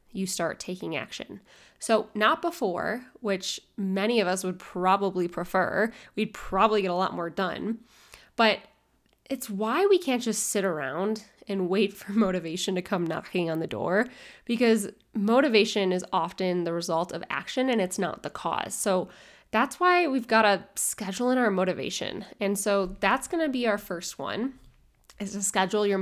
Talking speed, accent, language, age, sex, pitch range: 175 wpm, American, English, 10-29, female, 185-225 Hz